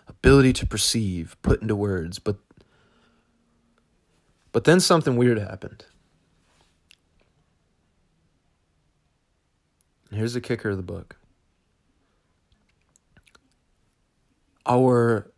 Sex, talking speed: male, 75 wpm